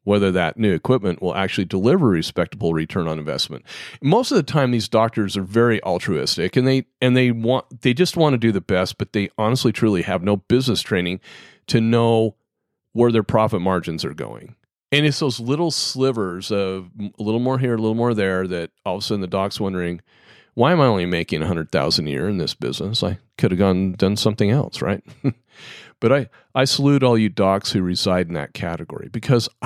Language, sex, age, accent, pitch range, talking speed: English, male, 40-59, American, 95-125 Hz, 210 wpm